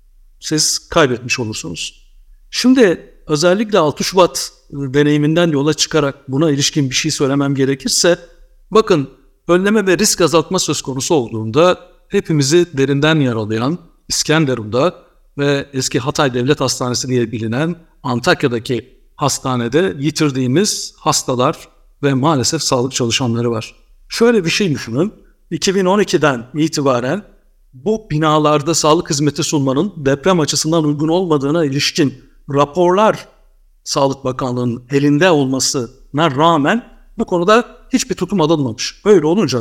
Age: 60-79